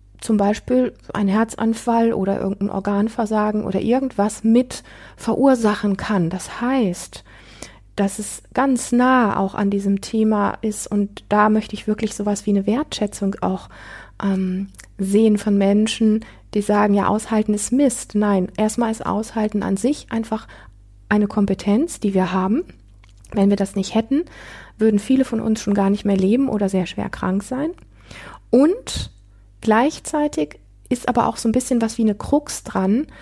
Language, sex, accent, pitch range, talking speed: German, female, German, 200-235 Hz, 155 wpm